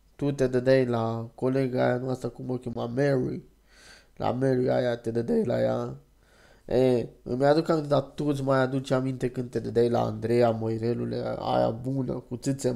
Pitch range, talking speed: 120-140 Hz, 180 wpm